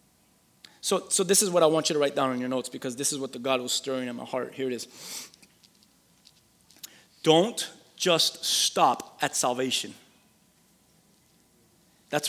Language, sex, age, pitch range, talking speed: English, male, 30-49, 135-170 Hz, 165 wpm